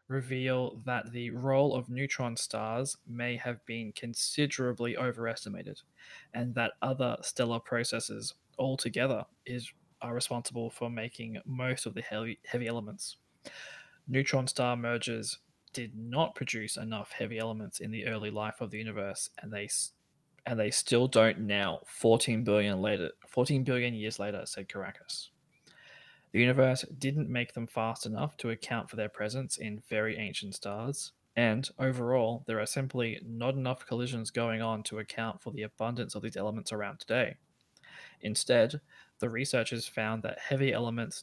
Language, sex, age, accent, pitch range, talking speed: English, male, 20-39, Australian, 110-130 Hz, 150 wpm